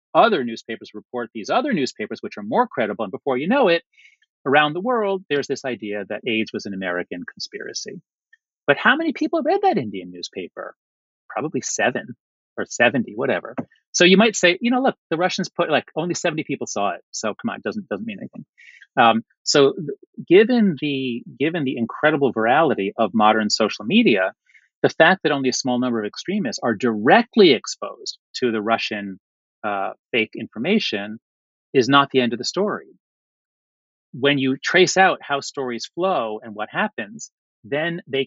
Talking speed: 175 wpm